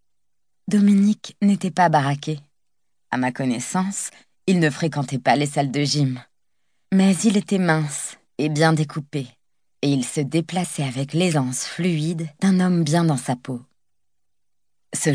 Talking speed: 145 wpm